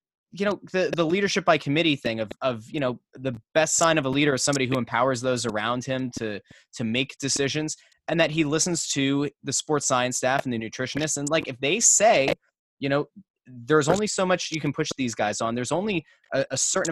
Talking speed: 225 wpm